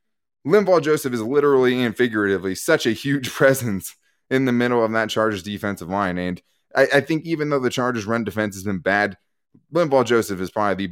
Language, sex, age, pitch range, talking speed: English, male, 20-39, 95-120 Hz, 200 wpm